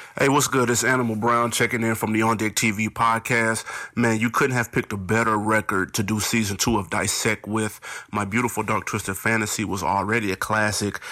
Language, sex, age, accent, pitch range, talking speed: English, male, 30-49, American, 115-180 Hz, 205 wpm